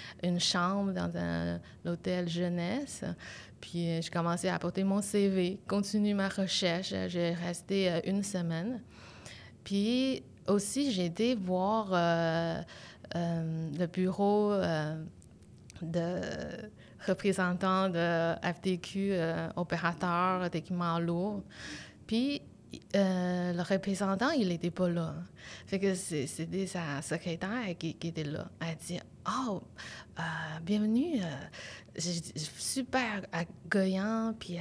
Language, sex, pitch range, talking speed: French, female, 170-205 Hz, 125 wpm